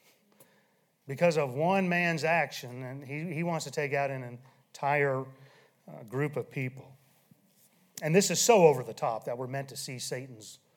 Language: English